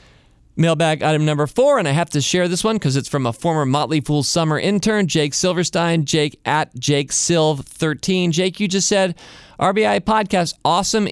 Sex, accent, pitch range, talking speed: male, American, 125-170 Hz, 175 wpm